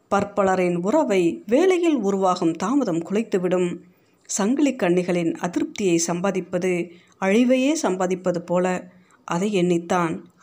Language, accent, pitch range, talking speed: Tamil, native, 180-245 Hz, 85 wpm